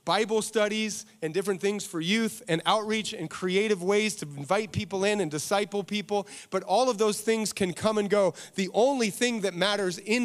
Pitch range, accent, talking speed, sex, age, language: 175-215 Hz, American, 200 wpm, male, 30-49, English